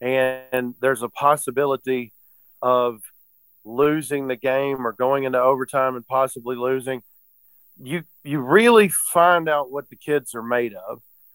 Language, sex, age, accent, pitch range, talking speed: English, male, 40-59, American, 120-135 Hz, 135 wpm